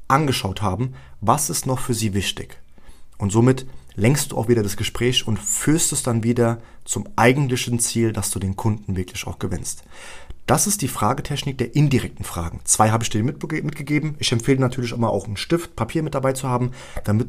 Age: 30-49